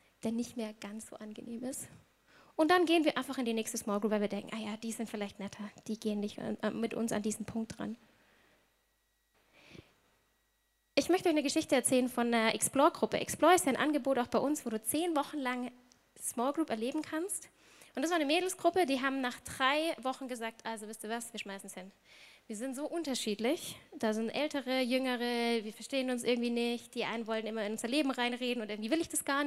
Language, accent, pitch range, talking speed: German, German, 225-280 Hz, 220 wpm